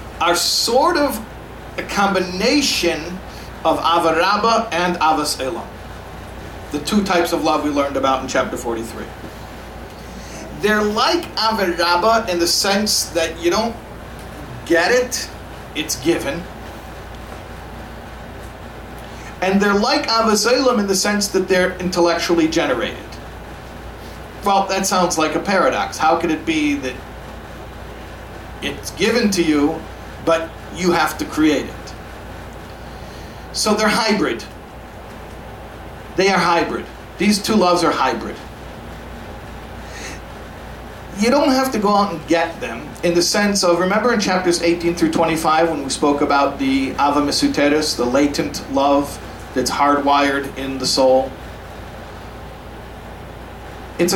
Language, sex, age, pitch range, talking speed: English, male, 50-69, 140-200 Hz, 120 wpm